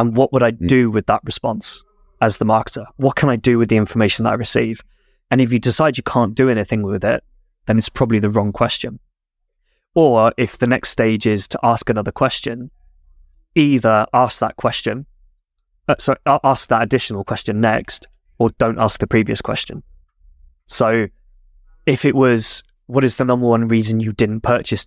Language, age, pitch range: English, 20-39, 105-120 Hz